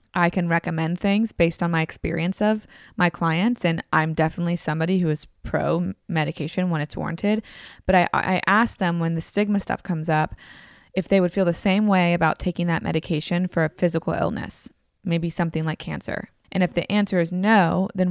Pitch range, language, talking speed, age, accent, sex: 165-190 Hz, English, 190 wpm, 20-39, American, female